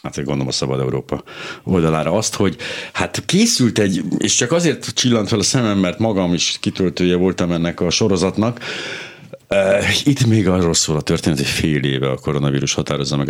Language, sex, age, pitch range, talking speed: Hungarian, male, 60-79, 75-100 Hz, 180 wpm